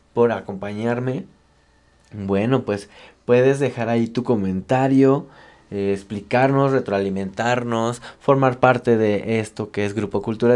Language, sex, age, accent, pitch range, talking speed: Spanish, male, 20-39, Mexican, 110-130 Hz, 115 wpm